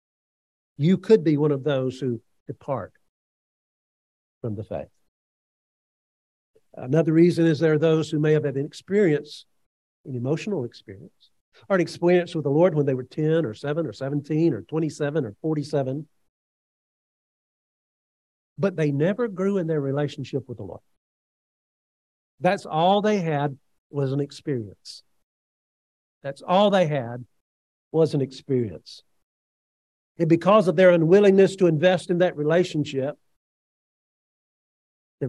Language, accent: English, American